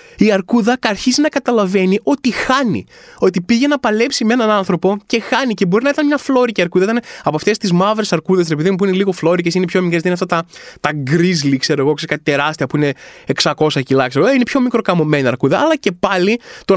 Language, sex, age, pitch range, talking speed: Greek, male, 20-39, 180-250 Hz, 220 wpm